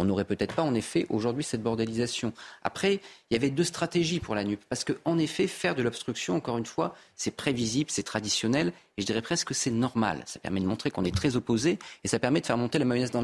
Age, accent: 40-59, French